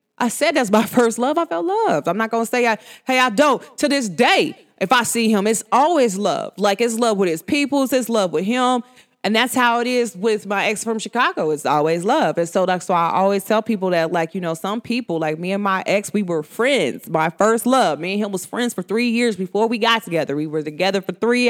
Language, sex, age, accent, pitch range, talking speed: English, female, 20-39, American, 180-245 Hz, 255 wpm